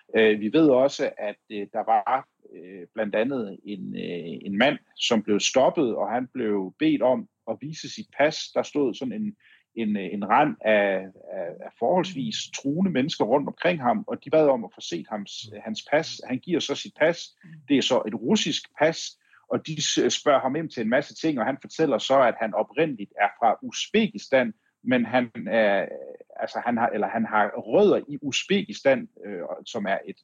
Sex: male